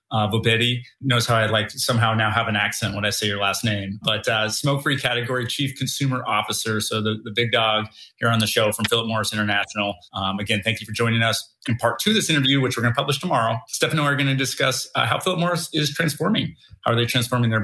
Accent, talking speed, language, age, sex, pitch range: American, 255 wpm, English, 30-49, male, 110-130 Hz